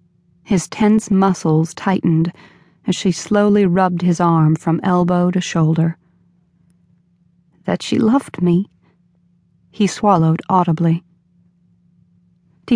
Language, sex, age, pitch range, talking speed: English, female, 30-49, 170-190 Hz, 105 wpm